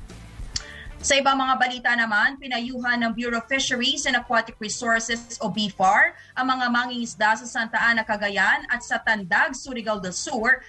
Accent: Filipino